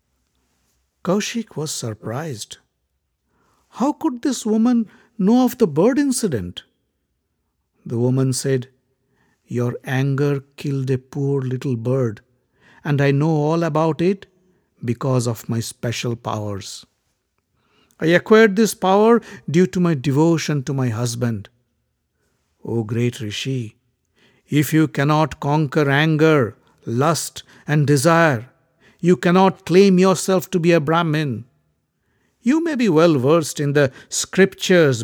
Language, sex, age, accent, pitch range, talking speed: English, male, 60-79, Indian, 125-170 Hz, 120 wpm